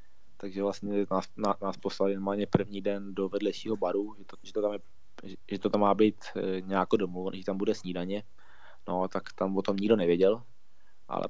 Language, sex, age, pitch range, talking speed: Slovak, male, 20-39, 95-105 Hz, 190 wpm